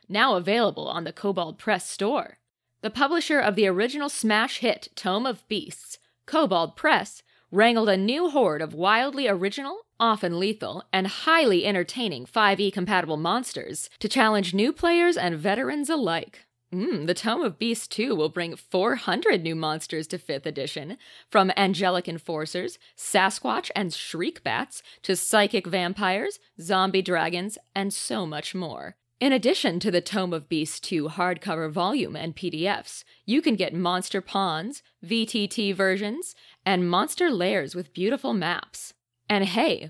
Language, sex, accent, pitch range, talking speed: English, female, American, 175-230 Hz, 145 wpm